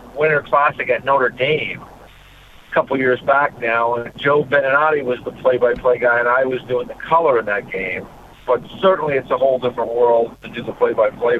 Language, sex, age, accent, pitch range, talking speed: English, male, 50-69, American, 130-165 Hz, 195 wpm